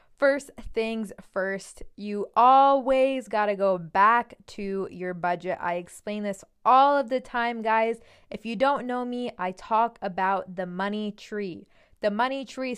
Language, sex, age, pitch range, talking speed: English, female, 20-39, 190-245 Hz, 160 wpm